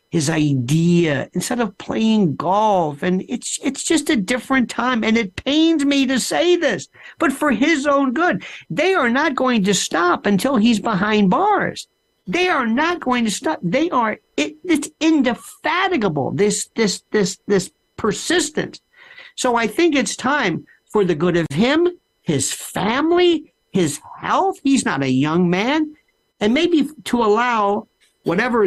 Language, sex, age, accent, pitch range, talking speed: English, male, 50-69, American, 165-255 Hz, 155 wpm